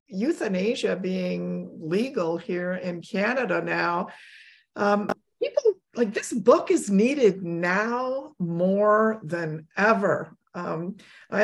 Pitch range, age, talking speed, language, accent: 190-235 Hz, 50-69, 105 wpm, English, American